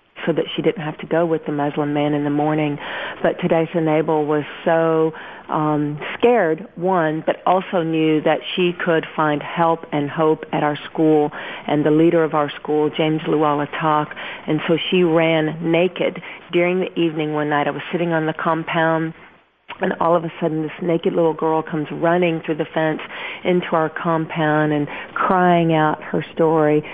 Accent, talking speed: American, 185 wpm